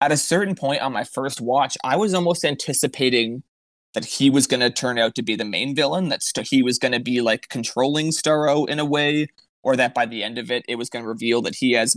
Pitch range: 120-150 Hz